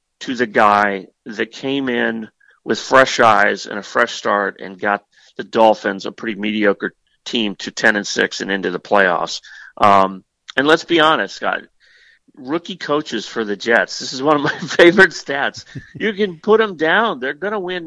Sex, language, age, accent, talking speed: male, English, 40-59, American, 190 wpm